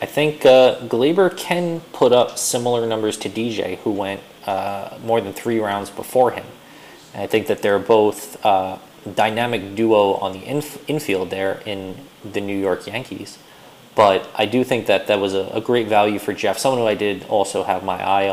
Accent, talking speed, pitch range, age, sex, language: American, 195 wpm, 100-140 Hz, 20-39, male, English